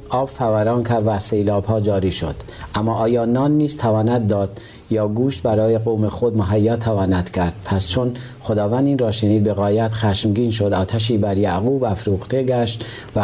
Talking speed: 170 wpm